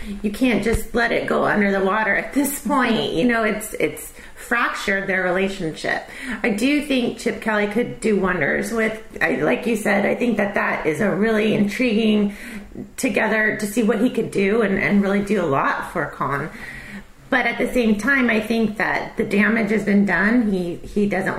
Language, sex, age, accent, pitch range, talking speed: English, female, 30-49, American, 205-245 Hz, 200 wpm